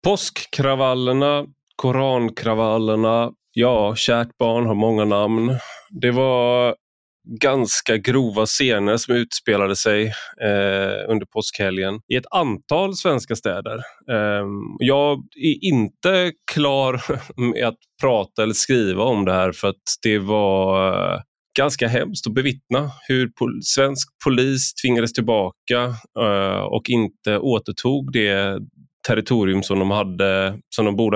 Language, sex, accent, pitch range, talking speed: Swedish, male, native, 105-130 Hz, 115 wpm